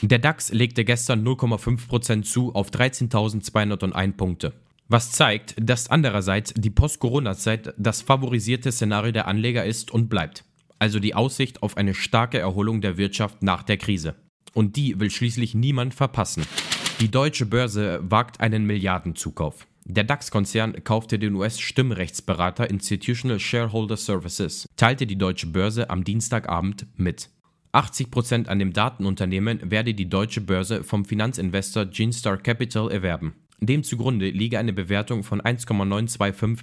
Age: 30-49